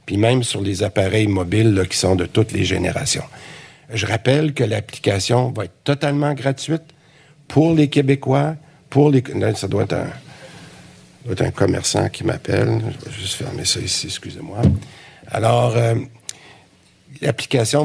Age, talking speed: 60-79, 145 wpm